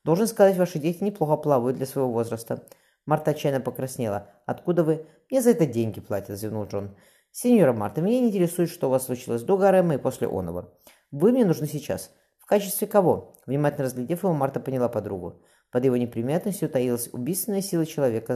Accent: native